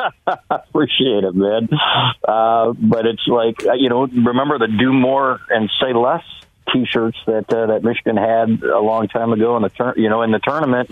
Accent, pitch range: American, 100-115 Hz